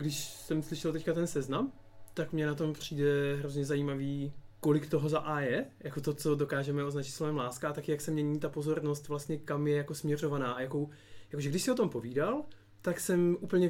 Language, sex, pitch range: Czech, male, 120-150 Hz